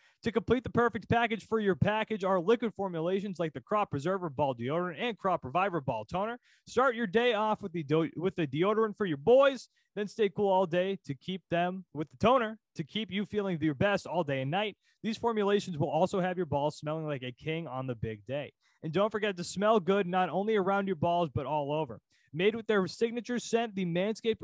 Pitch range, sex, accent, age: 165-215 Hz, male, American, 20-39